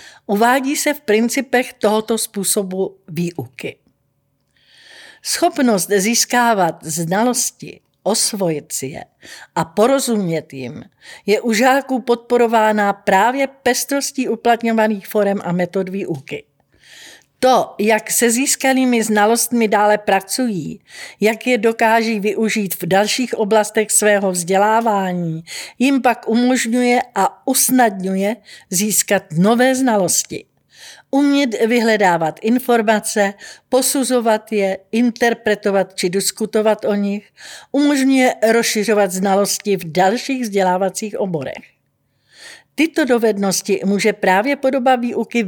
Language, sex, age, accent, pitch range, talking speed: Czech, female, 50-69, native, 195-250 Hz, 100 wpm